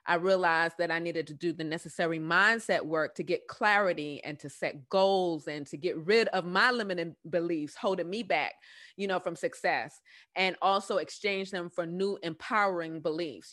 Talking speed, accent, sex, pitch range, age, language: 180 wpm, American, female, 165-190 Hz, 30-49, English